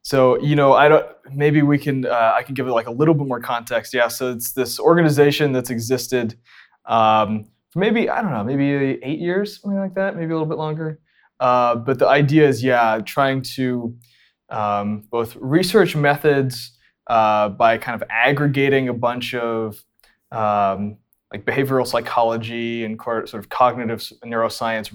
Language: English